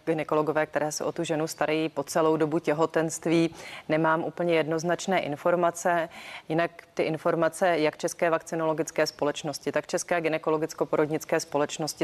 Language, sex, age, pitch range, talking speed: Czech, female, 30-49, 150-165 Hz, 130 wpm